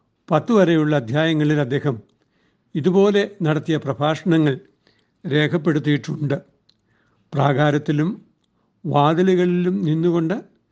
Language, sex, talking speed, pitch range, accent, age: Malayalam, male, 60 wpm, 140-175 Hz, native, 60-79